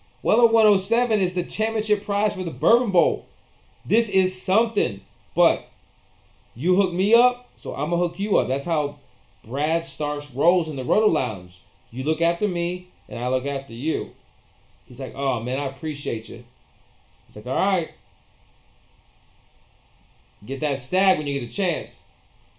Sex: male